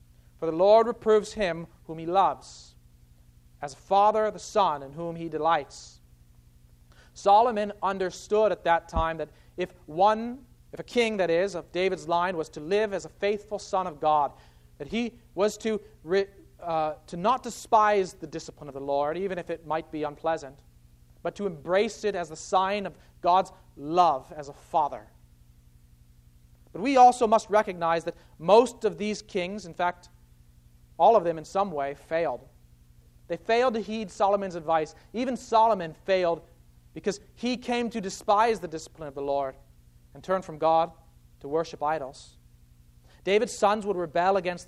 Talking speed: 170 wpm